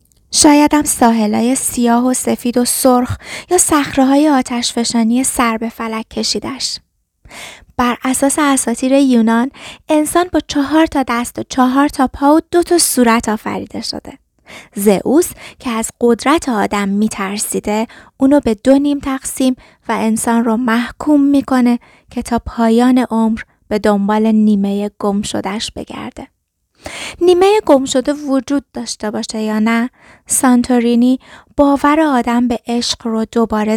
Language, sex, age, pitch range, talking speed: Persian, female, 20-39, 225-275 Hz, 135 wpm